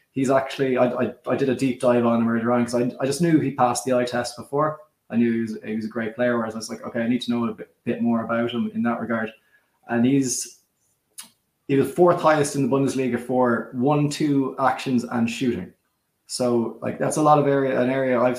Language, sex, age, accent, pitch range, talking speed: English, male, 20-39, Irish, 120-145 Hz, 245 wpm